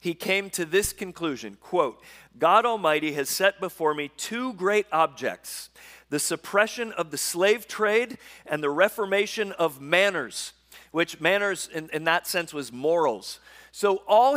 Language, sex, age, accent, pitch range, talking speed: English, male, 40-59, American, 170-230 Hz, 150 wpm